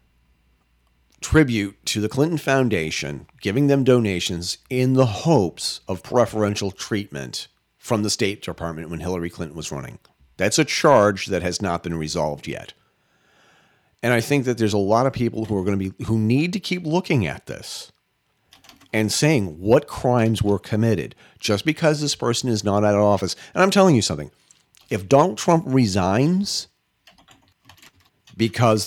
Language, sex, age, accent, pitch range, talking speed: English, male, 40-59, American, 100-140 Hz, 160 wpm